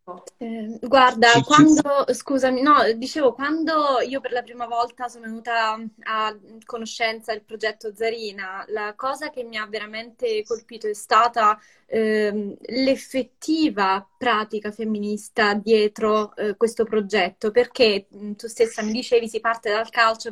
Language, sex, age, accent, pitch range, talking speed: Italian, female, 20-39, native, 210-245 Hz, 135 wpm